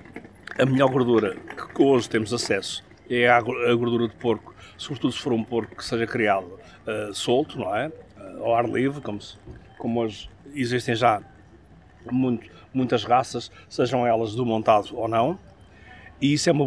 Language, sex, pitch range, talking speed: Portuguese, male, 115-130 Hz, 150 wpm